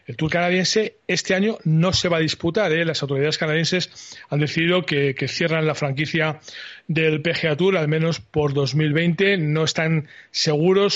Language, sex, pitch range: Spanish, male, 150-175 Hz